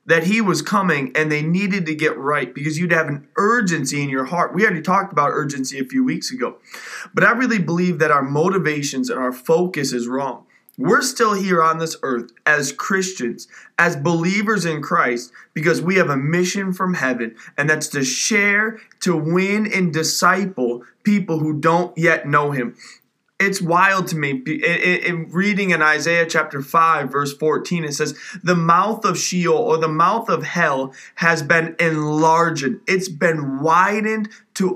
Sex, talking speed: male, 175 wpm